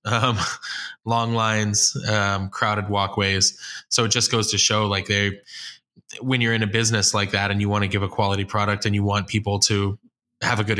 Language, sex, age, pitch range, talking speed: English, male, 10-29, 100-115 Hz, 205 wpm